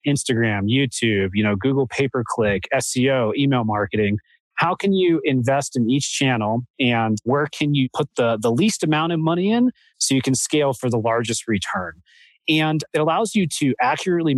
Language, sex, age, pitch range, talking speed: English, male, 30-49, 120-155 Hz, 175 wpm